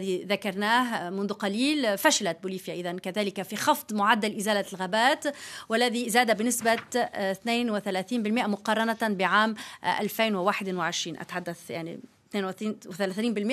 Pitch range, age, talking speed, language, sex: 195-245 Hz, 30-49, 90 wpm, Arabic, female